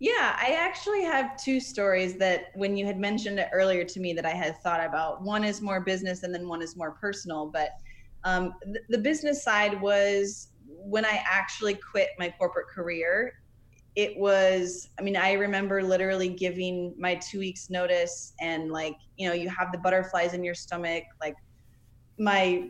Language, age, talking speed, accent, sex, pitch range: English, 20-39, 180 wpm, American, female, 170-205 Hz